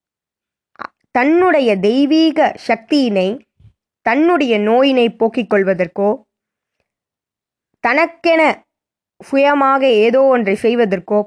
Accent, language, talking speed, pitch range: native, Tamil, 65 wpm, 215-295 Hz